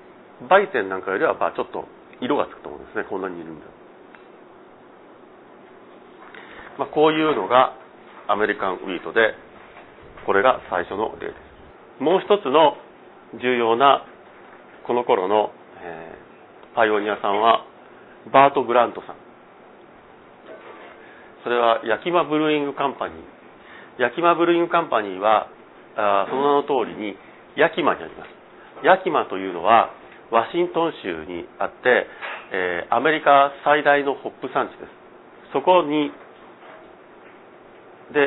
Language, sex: Japanese, male